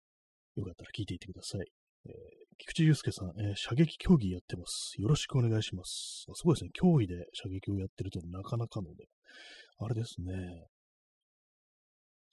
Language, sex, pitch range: Japanese, male, 90-120 Hz